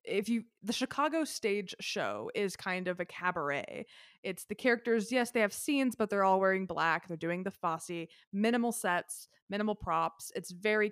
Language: English